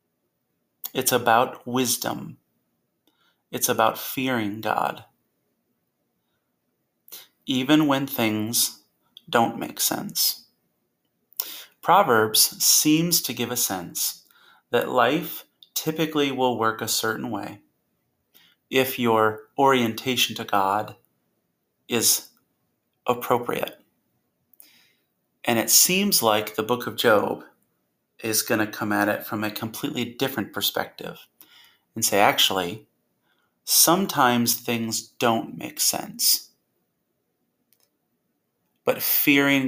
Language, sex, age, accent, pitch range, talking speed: English, male, 30-49, American, 105-130 Hz, 95 wpm